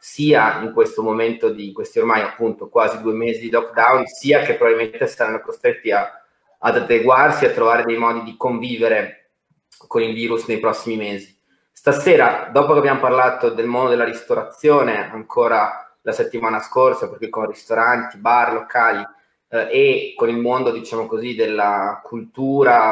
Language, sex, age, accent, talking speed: Italian, male, 20-39, native, 155 wpm